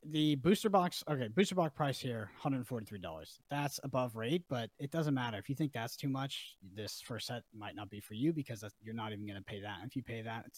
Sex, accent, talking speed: male, American, 245 wpm